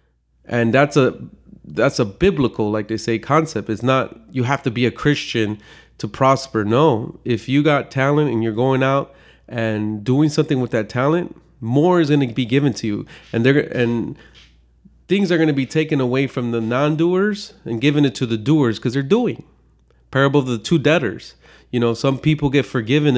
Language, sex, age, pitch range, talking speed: English, male, 30-49, 115-145 Hz, 195 wpm